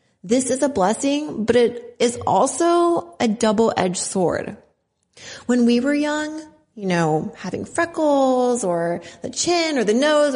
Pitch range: 180-250 Hz